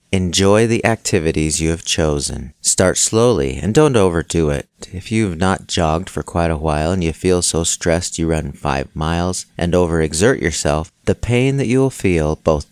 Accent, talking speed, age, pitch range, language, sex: American, 180 wpm, 40-59, 80-105 Hz, English, male